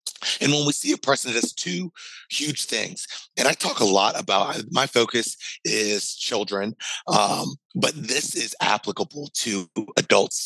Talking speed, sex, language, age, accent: 160 wpm, male, English, 30-49, American